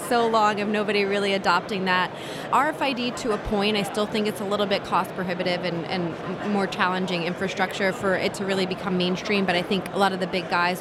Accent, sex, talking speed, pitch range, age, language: American, female, 220 wpm, 180-210 Hz, 30-49, English